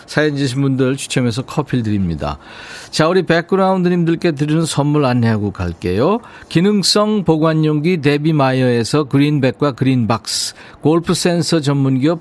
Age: 50-69